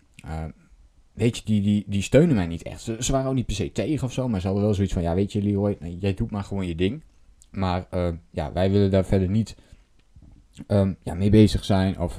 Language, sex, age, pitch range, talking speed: Dutch, male, 20-39, 90-105 Hz, 245 wpm